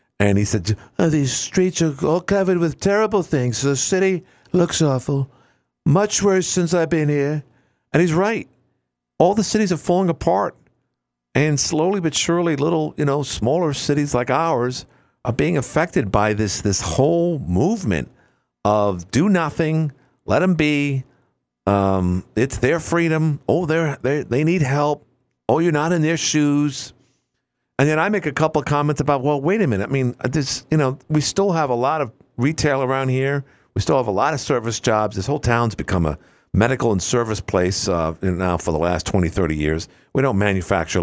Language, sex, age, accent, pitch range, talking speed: English, male, 50-69, American, 105-155 Hz, 185 wpm